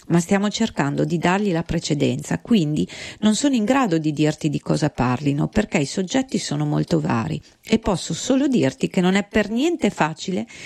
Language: Italian